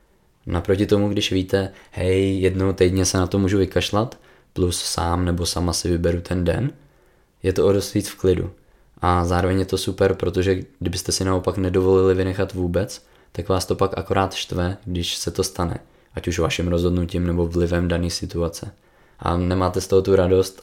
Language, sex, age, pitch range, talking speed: Czech, male, 20-39, 85-95 Hz, 175 wpm